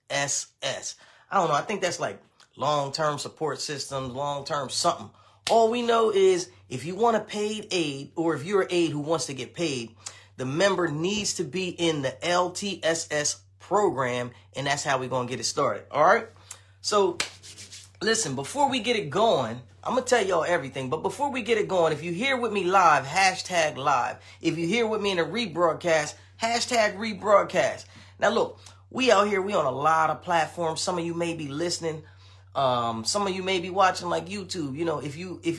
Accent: American